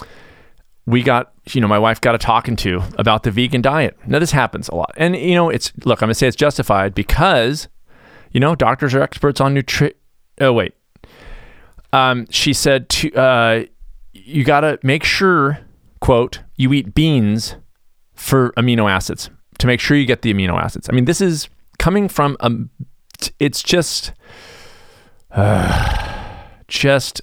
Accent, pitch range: American, 100-135 Hz